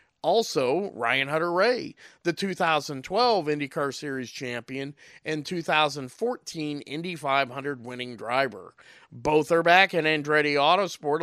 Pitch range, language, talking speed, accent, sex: 130-175 Hz, English, 110 wpm, American, male